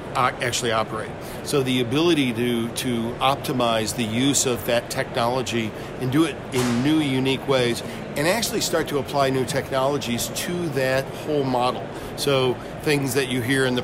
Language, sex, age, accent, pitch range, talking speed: English, male, 50-69, American, 120-145 Hz, 165 wpm